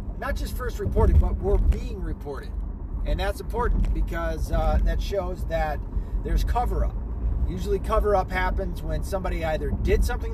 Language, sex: English, male